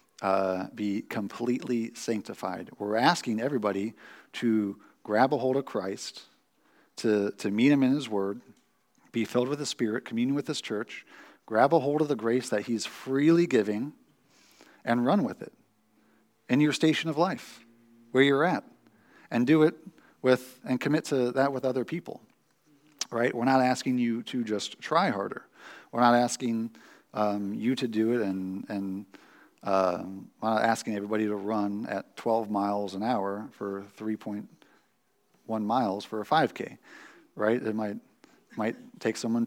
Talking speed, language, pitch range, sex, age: 170 wpm, English, 105-130 Hz, male, 50-69